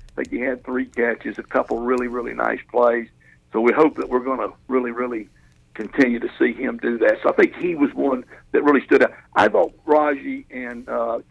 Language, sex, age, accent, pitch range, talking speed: English, male, 60-79, American, 120-155 Hz, 230 wpm